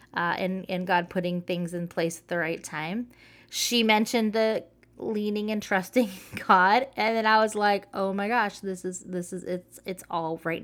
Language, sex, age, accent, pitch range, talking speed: English, female, 20-39, American, 180-230 Hz, 195 wpm